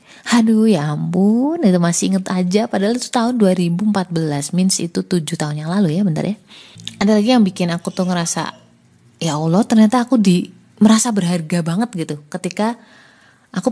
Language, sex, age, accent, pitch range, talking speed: Indonesian, female, 20-39, native, 165-205 Hz, 165 wpm